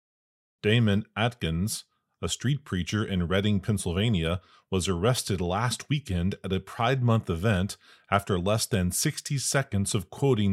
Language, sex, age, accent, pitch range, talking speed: English, male, 40-59, American, 90-115 Hz, 135 wpm